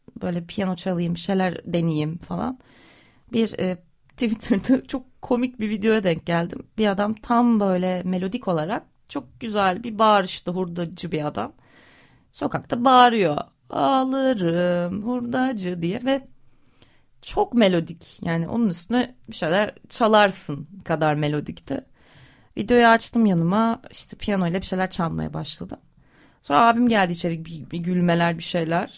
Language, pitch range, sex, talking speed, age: Turkish, 175-235 Hz, female, 130 wpm, 30-49